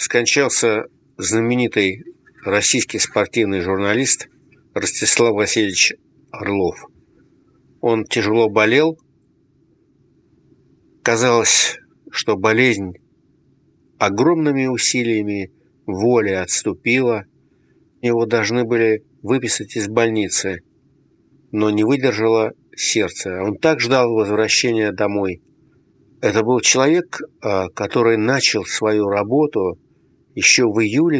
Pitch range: 105-125 Hz